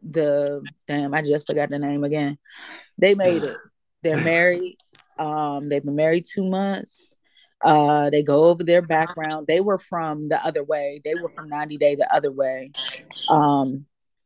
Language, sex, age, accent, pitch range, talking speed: English, female, 20-39, American, 145-175 Hz, 170 wpm